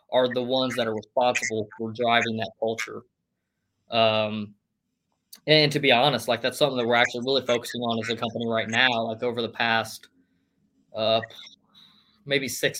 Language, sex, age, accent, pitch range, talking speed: English, male, 20-39, American, 115-135 Hz, 175 wpm